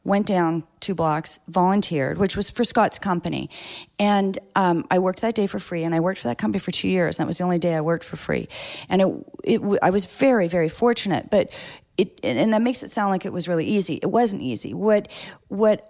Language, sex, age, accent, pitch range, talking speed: English, female, 40-59, American, 165-200 Hz, 225 wpm